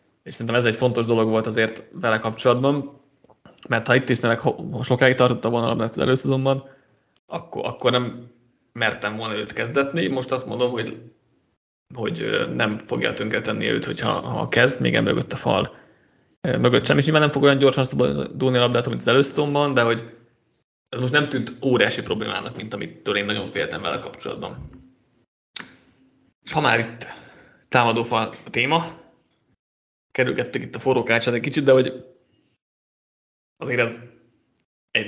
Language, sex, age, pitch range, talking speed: Hungarian, male, 20-39, 115-135 Hz, 155 wpm